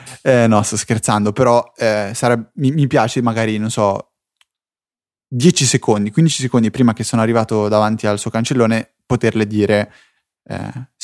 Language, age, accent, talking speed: Italian, 10-29, native, 145 wpm